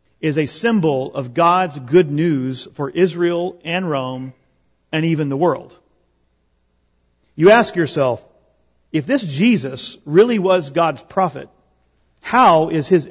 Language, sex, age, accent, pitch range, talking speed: English, male, 40-59, American, 120-185 Hz, 130 wpm